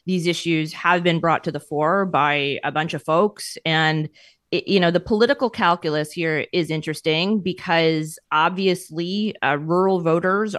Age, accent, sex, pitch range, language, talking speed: 30-49, American, female, 155-185 Hz, English, 155 wpm